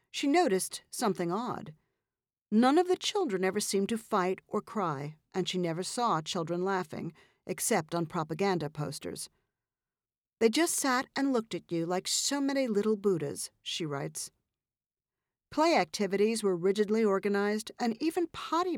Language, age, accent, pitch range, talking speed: English, 50-69, American, 175-235 Hz, 145 wpm